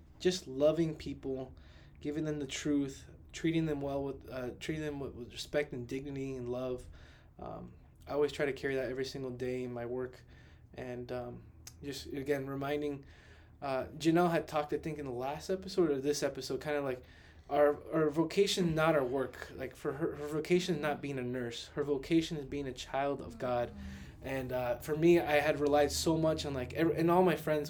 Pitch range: 130-160 Hz